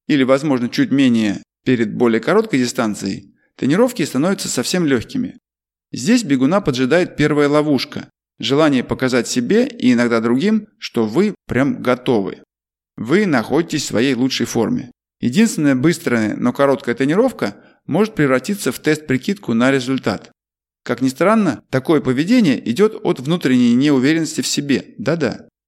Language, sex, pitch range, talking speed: Russian, male, 130-205 Hz, 130 wpm